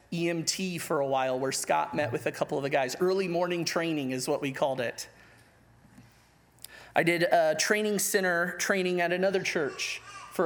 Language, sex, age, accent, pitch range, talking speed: English, male, 30-49, American, 160-195 Hz, 180 wpm